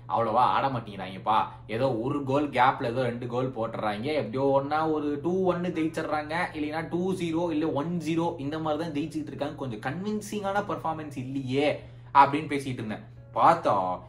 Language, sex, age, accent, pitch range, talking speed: Tamil, male, 20-39, native, 125-170 Hz, 145 wpm